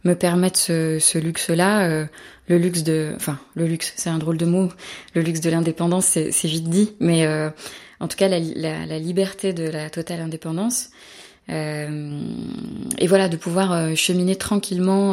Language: French